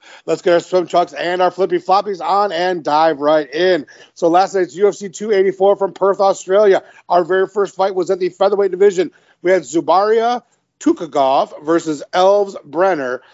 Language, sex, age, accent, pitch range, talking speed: English, male, 40-59, American, 160-195 Hz, 170 wpm